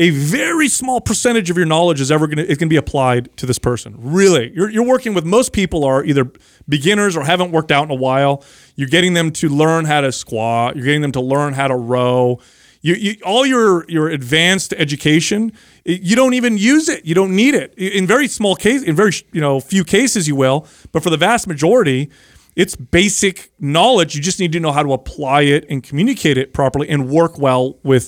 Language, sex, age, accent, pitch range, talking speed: English, male, 30-49, American, 135-170 Hz, 220 wpm